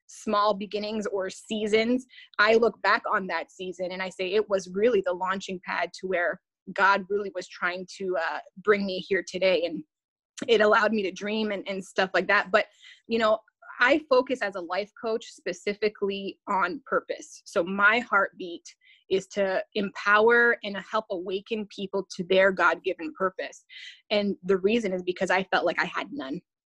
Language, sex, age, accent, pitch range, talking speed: English, female, 20-39, American, 190-230 Hz, 175 wpm